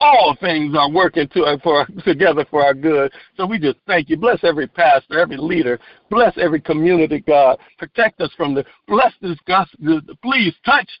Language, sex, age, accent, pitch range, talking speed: English, male, 60-79, American, 150-210 Hz, 180 wpm